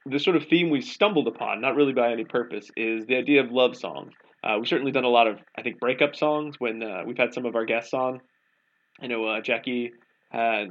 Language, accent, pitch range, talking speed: English, American, 115-150 Hz, 240 wpm